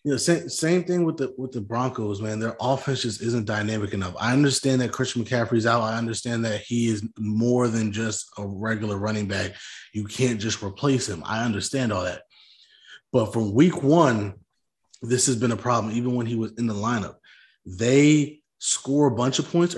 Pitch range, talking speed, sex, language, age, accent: 110-130 Hz, 200 wpm, male, English, 20-39, American